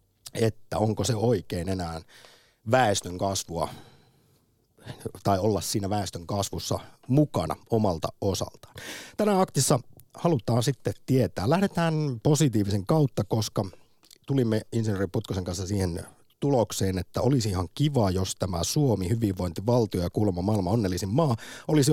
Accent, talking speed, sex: native, 120 wpm, male